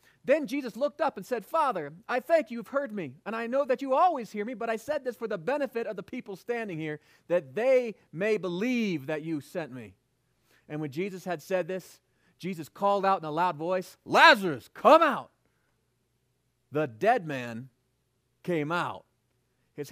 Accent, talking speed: American, 190 wpm